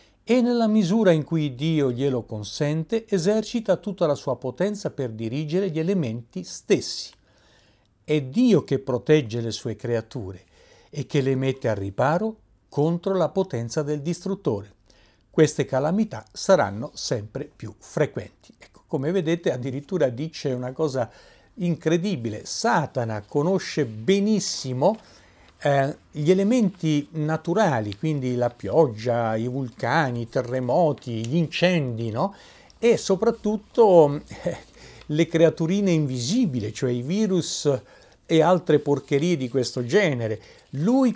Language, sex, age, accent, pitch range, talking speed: Italian, male, 60-79, native, 125-185 Hz, 115 wpm